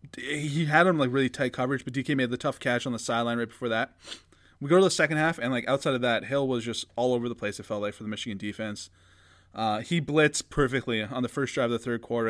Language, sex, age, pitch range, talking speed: English, male, 20-39, 110-140 Hz, 275 wpm